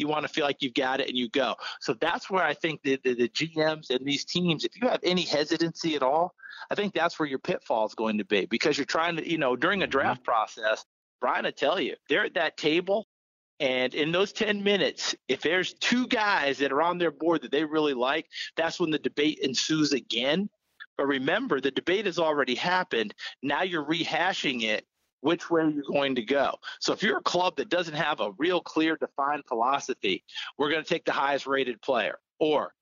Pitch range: 140-175 Hz